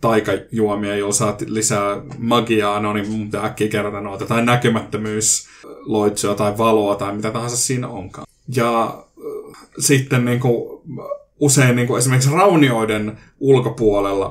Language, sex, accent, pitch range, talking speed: Finnish, male, native, 105-125 Hz, 115 wpm